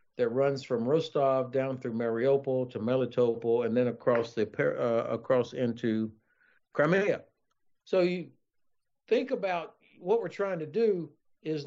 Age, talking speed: 60-79, 140 wpm